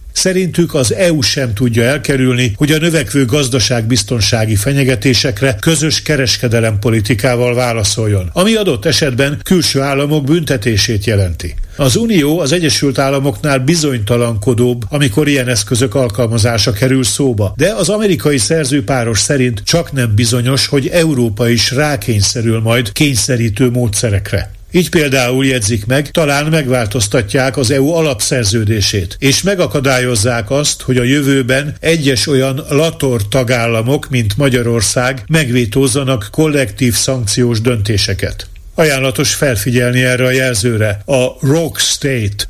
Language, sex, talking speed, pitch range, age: Hungarian, male, 115 wpm, 115-145 Hz, 50-69